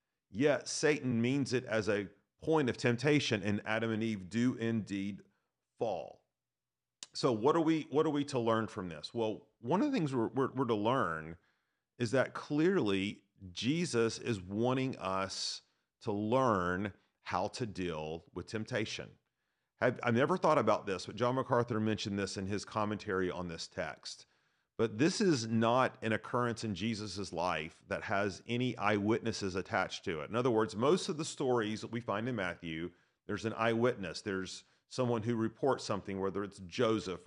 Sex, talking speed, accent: male, 170 wpm, American